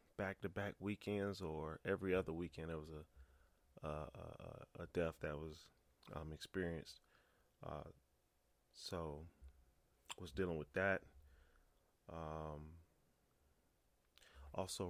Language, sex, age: English, male, 20-39